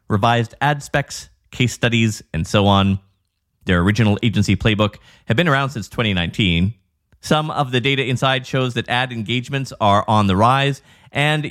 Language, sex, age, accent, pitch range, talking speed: English, male, 30-49, American, 105-150 Hz, 160 wpm